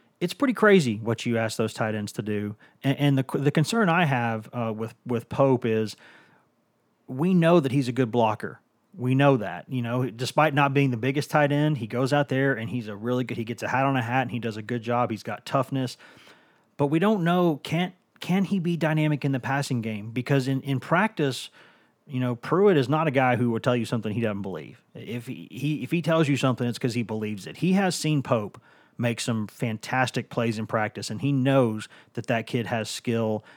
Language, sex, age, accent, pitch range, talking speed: English, male, 30-49, American, 115-140 Hz, 230 wpm